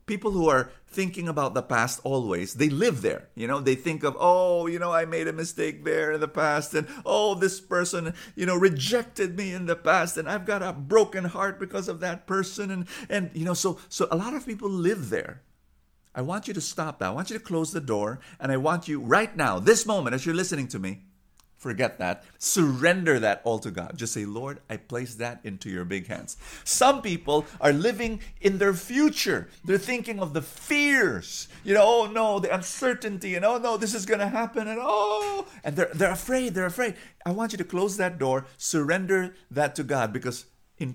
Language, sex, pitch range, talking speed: English, male, 125-195 Hz, 220 wpm